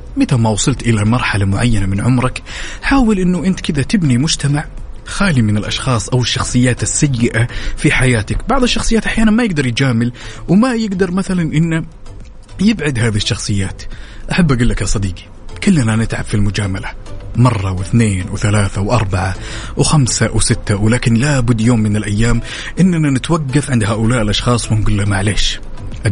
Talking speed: 145 wpm